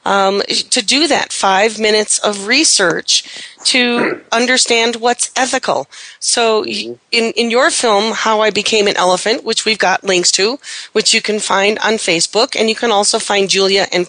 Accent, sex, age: American, female, 40-59